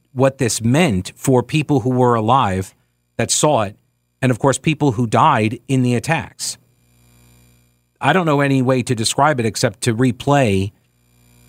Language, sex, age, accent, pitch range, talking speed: English, male, 50-69, American, 95-140 Hz, 160 wpm